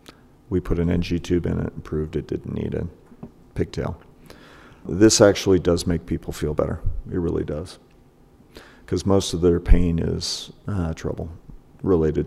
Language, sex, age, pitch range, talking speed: English, male, 40-59, 85-95 Hz, 160 wpm